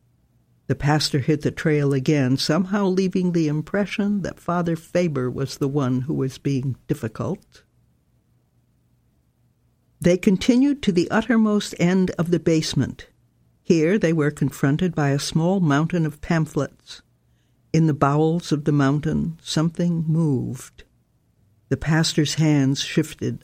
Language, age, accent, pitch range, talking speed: English, 60-79, American, 135-165 Hz, 130 wpm